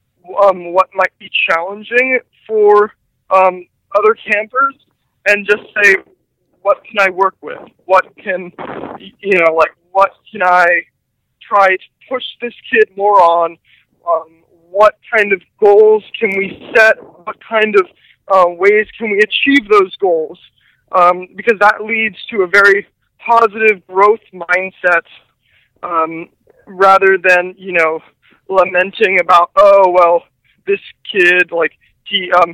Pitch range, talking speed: 180-230 Hz, 135 wpm